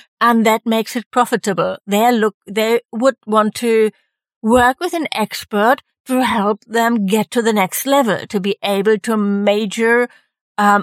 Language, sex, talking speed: English, female, 160 wpm